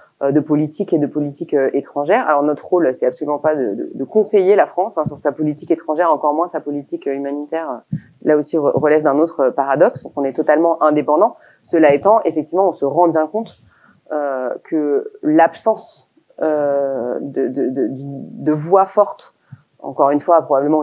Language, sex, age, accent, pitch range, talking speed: French, female, 30-49, French, 140-170 Hz, 175 wpm